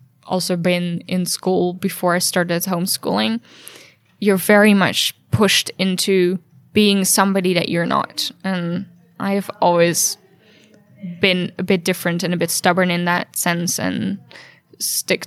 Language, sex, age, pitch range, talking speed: German, female, 10-29, 175-195 Hz, 135 wpm